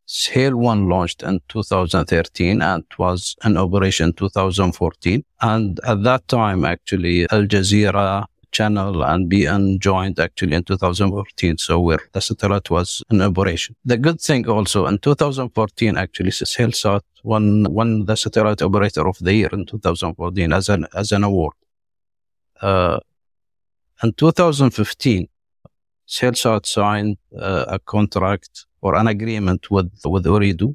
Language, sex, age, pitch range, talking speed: English, male, 50-69, 90-110 Hz, 135 wpm